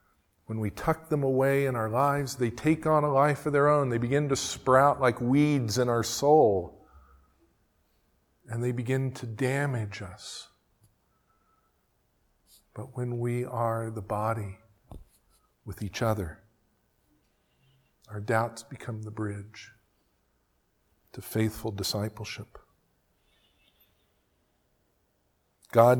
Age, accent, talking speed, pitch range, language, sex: 50-69, American, 115 wpm, 105-130 Hz, English, male